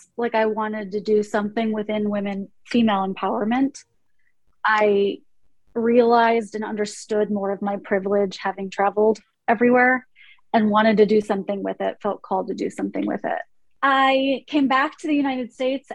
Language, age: English, 30-49